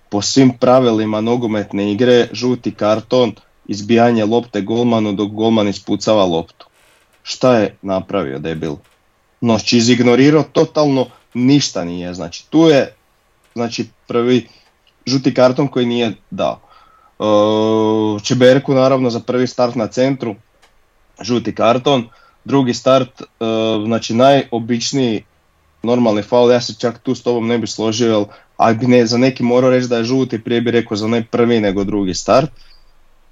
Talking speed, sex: 140 wpm, male